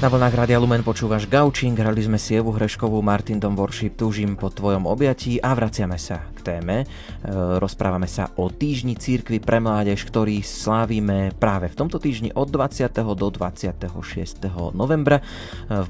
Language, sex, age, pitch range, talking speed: Slovak, male, 20-39, 90-110 Hz, 145 wpm